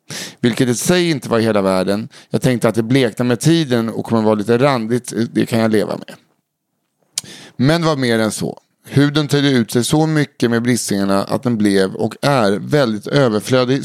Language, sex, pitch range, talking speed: Swedish, male, 110-140 Hz, 200 wpm